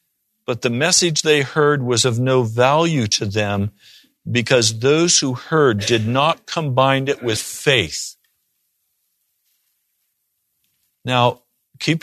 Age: 50-69